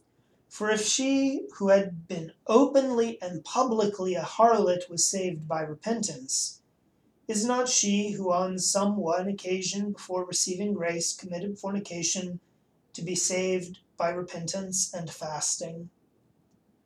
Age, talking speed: 30-49, 125 wpm